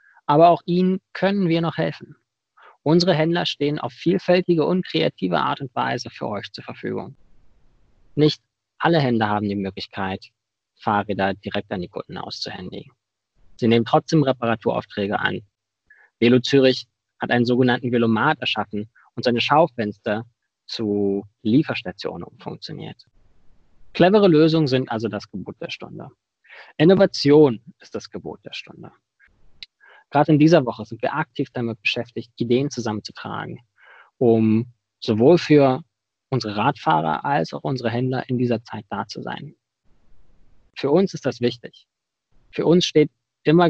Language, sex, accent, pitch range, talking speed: German, male, German, 110-155 Hz, 135 wpm